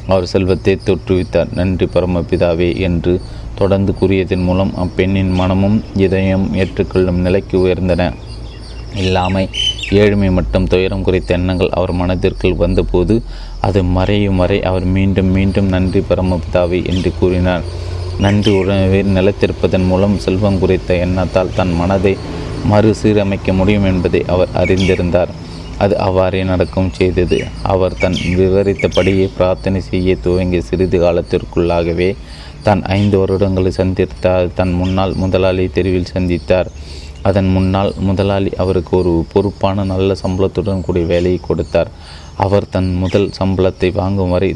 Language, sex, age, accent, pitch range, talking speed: Tamil, male, 30-49, native, 90-95 Hz, 115 wpm